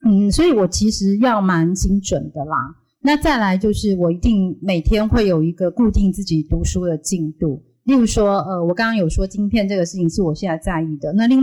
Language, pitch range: Chinese, 165-215 Hz